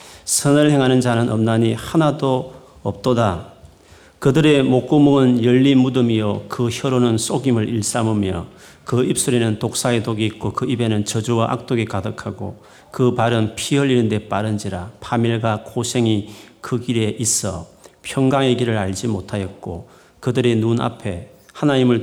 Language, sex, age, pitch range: Korean, male, 40-59, 110-150 Hz